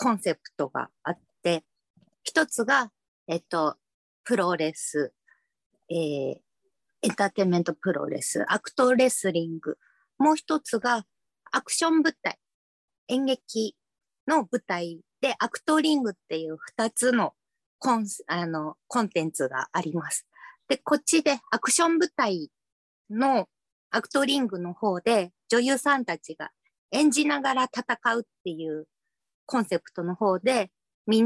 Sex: female